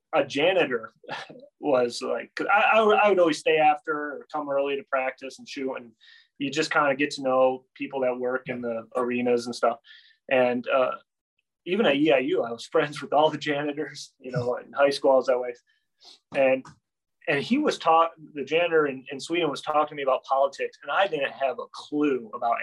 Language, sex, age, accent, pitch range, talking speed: English, male, 30-49, American, 125-155 Hz, 205 wpm